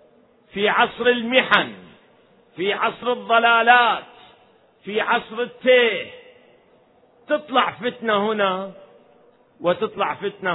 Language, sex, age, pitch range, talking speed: Arabic, male, 50-69, 205-250 Hz, 80 wpm